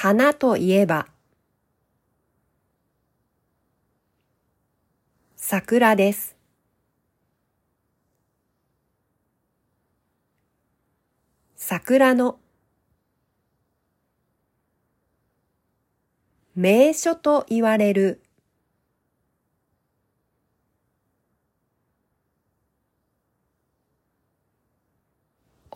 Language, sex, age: Japanese, female, 40-59